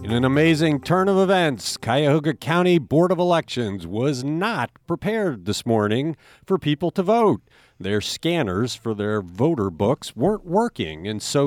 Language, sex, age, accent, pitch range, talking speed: English, male, 50-69, American, 105-155 Hz, 155 wpm